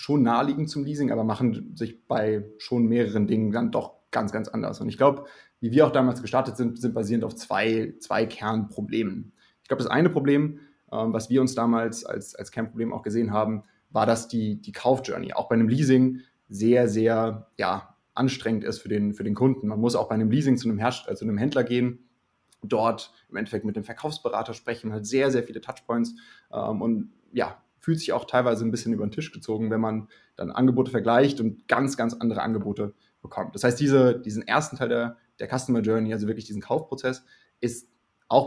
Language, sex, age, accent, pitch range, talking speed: German, male, 20-39, German, 110-130 Hz, 205 wpm